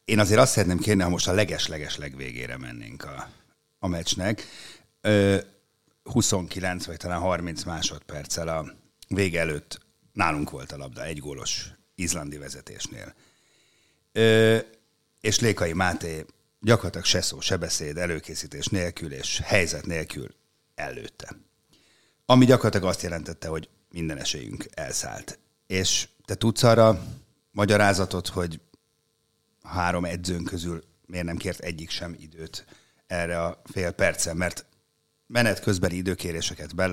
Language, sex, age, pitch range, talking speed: Hungarian, male, 60-79, 85-105 Hz, 125 wpm